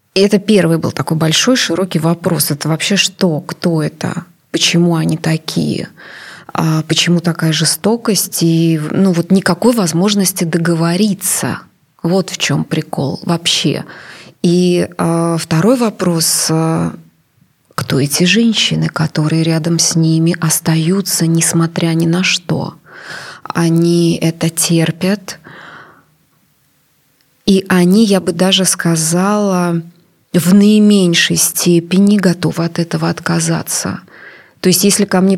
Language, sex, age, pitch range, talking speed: Russian, female, 20-39, 165-195 Hz, 110 wpm